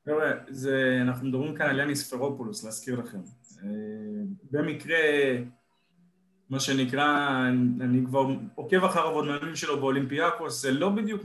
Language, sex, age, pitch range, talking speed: Hebrew, male, 20-39, 140-185 Hz, 130 wpm